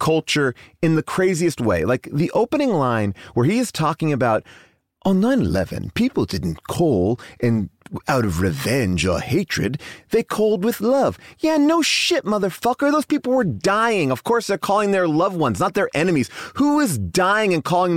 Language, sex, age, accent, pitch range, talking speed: English, male, 30-49, American, 135-215 Hz, 175 wpm